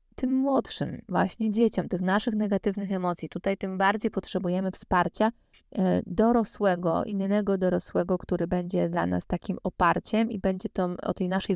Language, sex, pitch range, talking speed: Polish, female, 180-215 Hz, 140 wpm